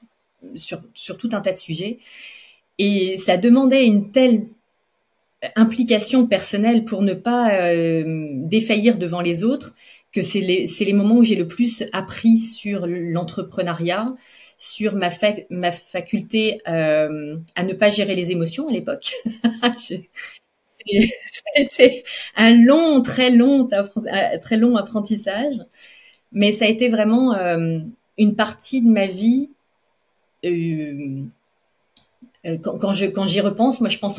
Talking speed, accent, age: 135 wpm, French, 30-49